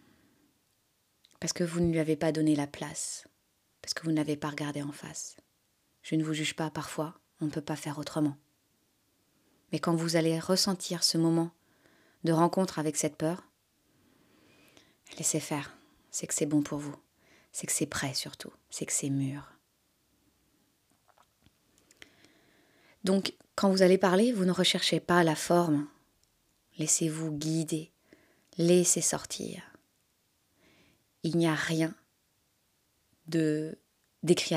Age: 20-39